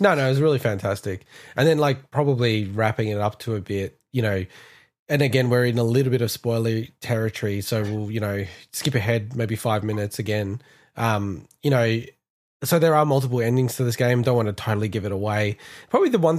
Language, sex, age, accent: English, male, 20-39, Australian